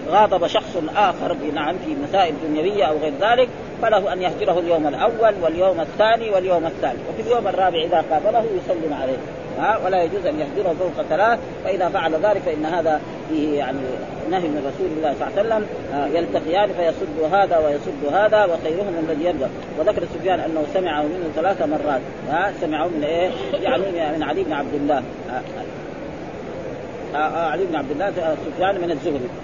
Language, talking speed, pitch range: Arabic, 165 wpm, 160-195 Hz